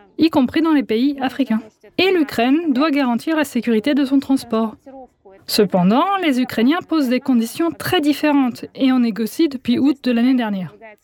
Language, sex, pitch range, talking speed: French, female, 230-290 Hz, 170 wpm